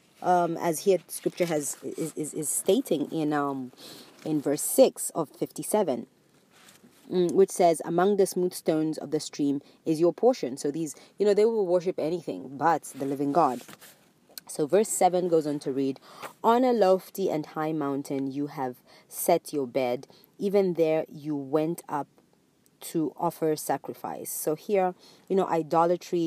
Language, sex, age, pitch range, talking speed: English, female, 30-49, 145-180 Hz, 165 wpm